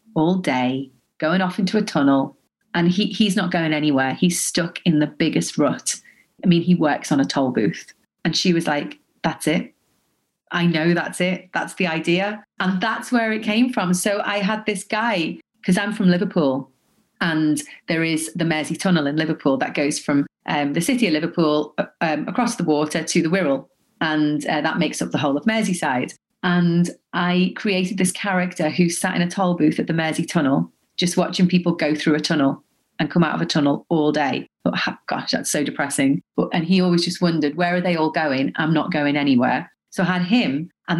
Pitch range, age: 155-190 Hz, 30-49